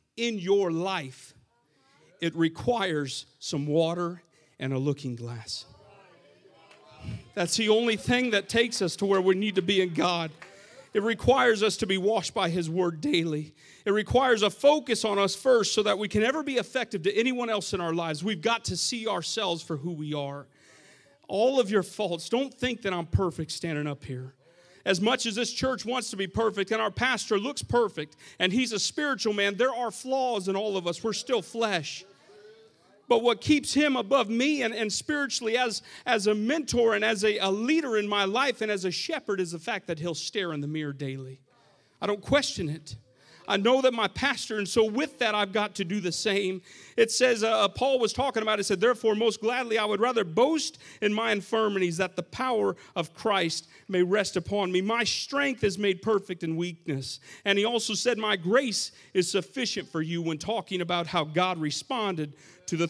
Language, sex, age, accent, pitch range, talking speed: English, male, 40-59, American, 170-230 Hz, 205 wpm